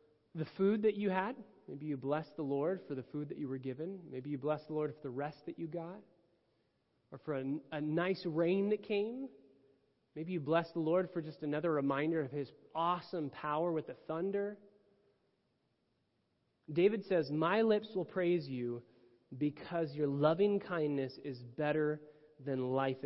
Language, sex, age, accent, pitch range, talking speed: English, male, 30-49, American, 135-180 Hz, 175 wpm